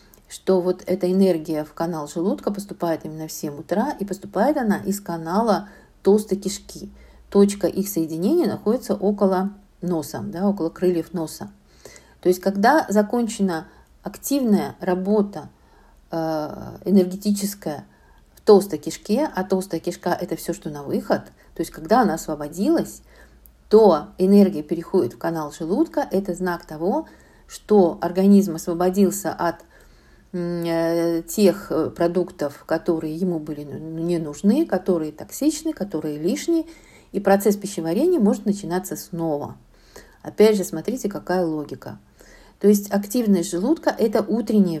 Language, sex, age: Russian, female, 50-69